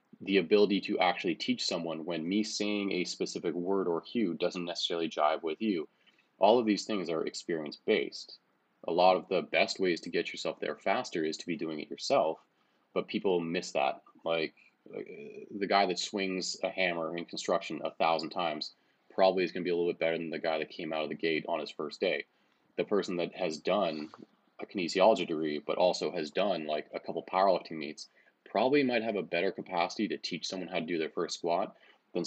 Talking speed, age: 210 wpm, 30-49